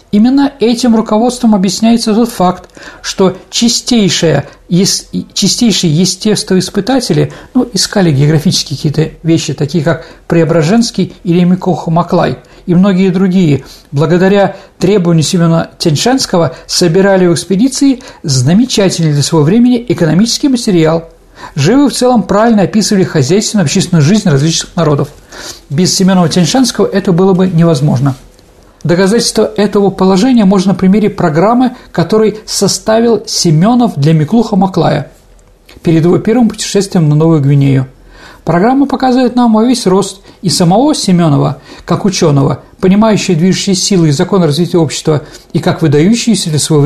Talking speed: 120 wpm